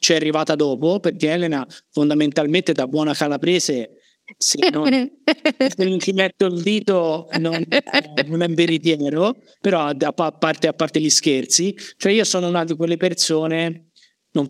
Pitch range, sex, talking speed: 150-200 Hz, male, 150 wpm